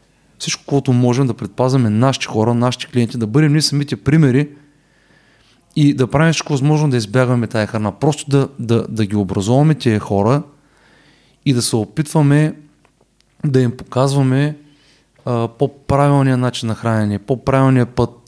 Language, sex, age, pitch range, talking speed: Bulgarian, male, 30-49, 115-140 Hz, 150 wpm